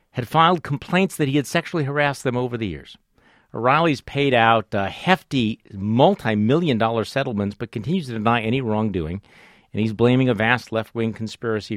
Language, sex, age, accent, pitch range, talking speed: English, male, 50-69, American, 110-165 Hz, 170 wpm